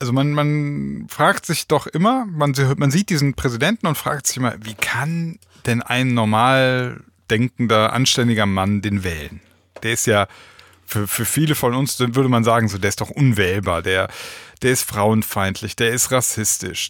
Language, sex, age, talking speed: German, male, 30-49, 170 wpm